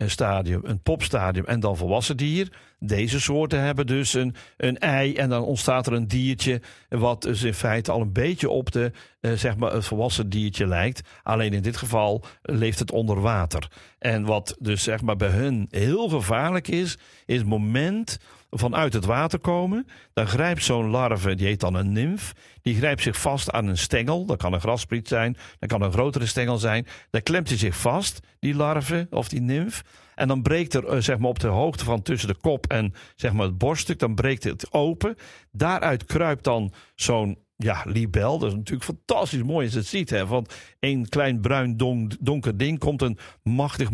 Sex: male